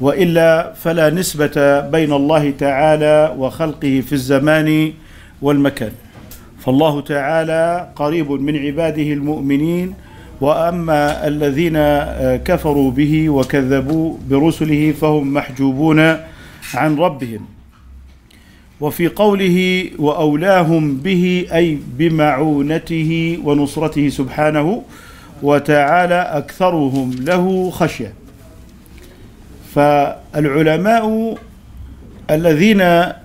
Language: Arabic